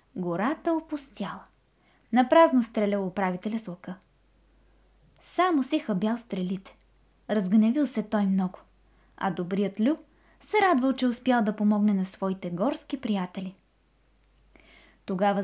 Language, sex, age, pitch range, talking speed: Bulgarian, female, 20-39, 195-260 Hz, 115 wpm